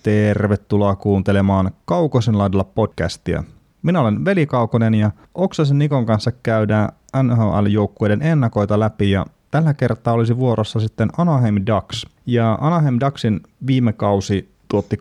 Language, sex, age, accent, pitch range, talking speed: Finnish, male, 30-49, native, 95-115 Hz, 125 wpm